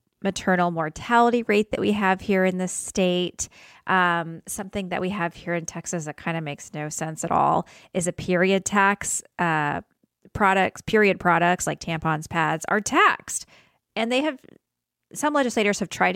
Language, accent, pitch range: English, American, 175-235 Hz